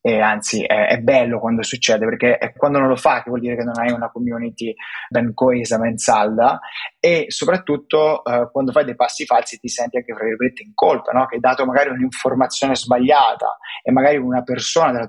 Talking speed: 205 wpm